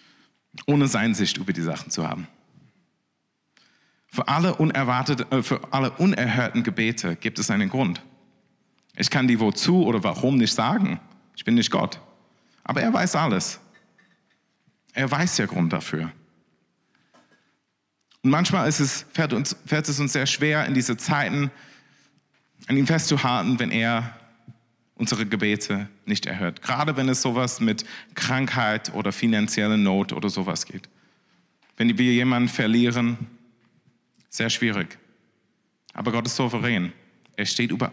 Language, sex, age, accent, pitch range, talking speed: German, male, 40-59, German, 115-145 Hz, 140 wpm